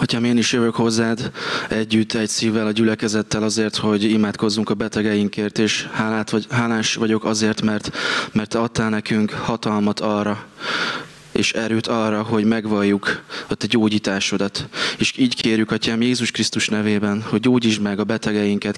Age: 20-39